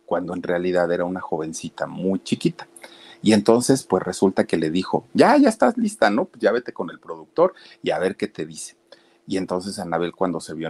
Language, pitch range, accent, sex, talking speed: Spanish, 90-120 Hz, Mexican, male, 215 wpm